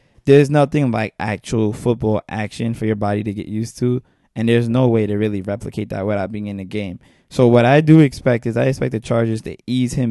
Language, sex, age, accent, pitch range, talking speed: English, male, 20-39, American, 105-125 Hz, 230 wpm